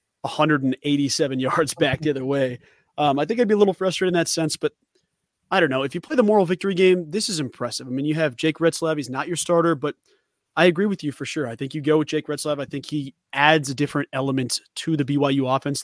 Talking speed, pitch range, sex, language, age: 250 wpm, 135-170 Hz, male, English, 30-49